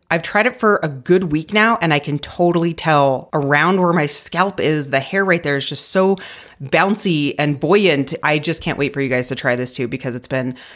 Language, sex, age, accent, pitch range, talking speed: English, female, 30-49, American, 145-180 Hz, 235 wpm